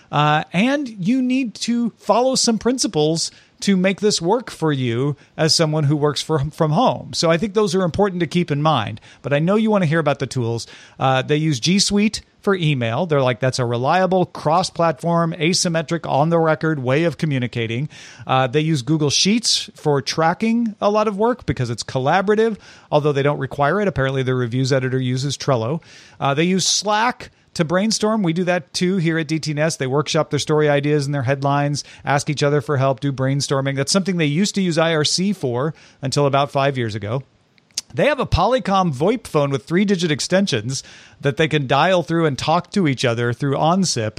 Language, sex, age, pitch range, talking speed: English, male, 40-59, 135-180 Hz, 200 wpm